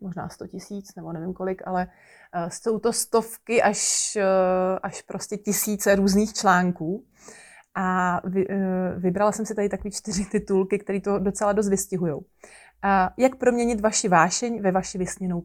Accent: native